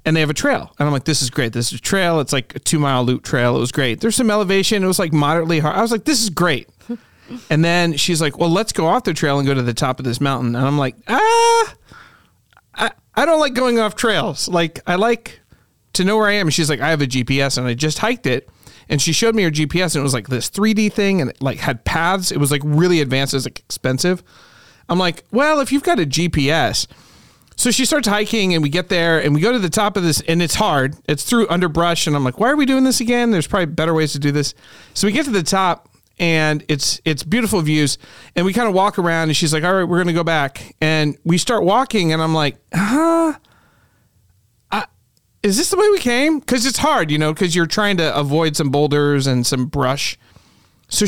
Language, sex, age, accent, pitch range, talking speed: English, male, 40-59, American, 150-220 Hz, 255 wpm